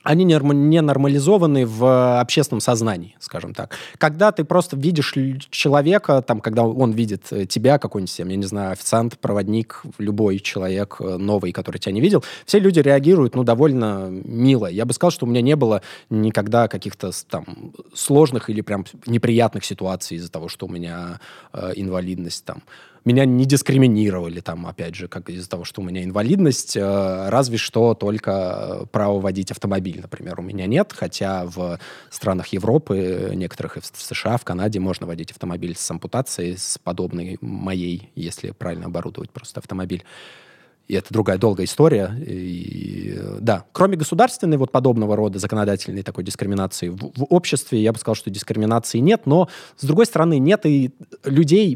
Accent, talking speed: native, 160 wpm